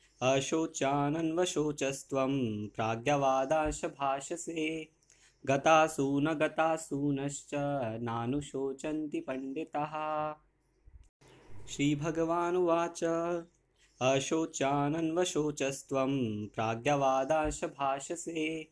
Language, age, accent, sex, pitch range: Hindi, 20-39, native, male, 135-160 Hz